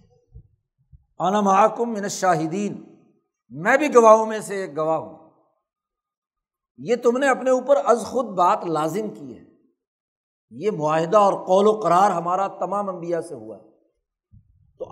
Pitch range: 165-220 Hz